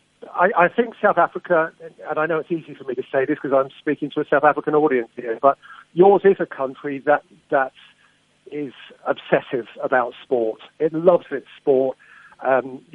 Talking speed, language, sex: 185 wpm, English, male